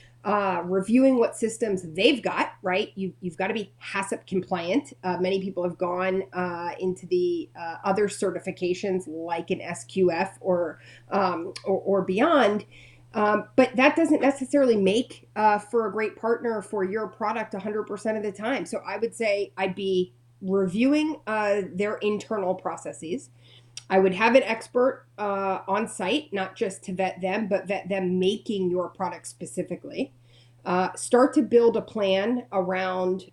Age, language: 30-49, English